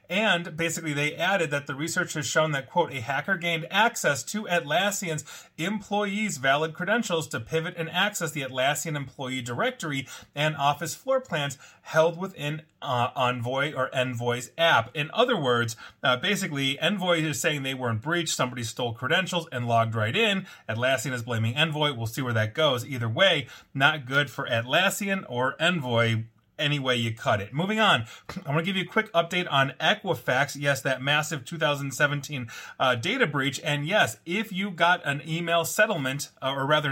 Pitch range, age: 125-170 Hz, 30-49